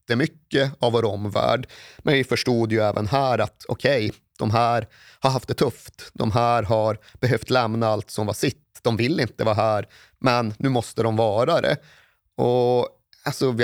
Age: 30-49